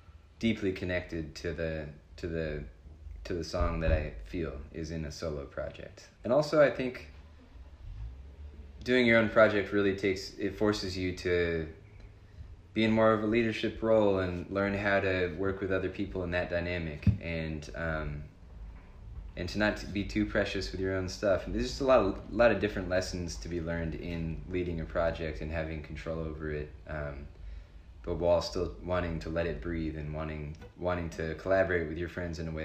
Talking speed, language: 195 wpm, English